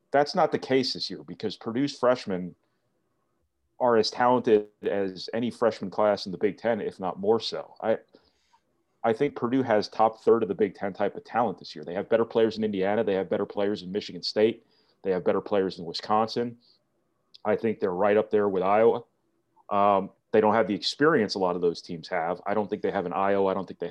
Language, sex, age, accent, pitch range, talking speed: English, male, 30-49, American, 95-110 Hz, 225 wpm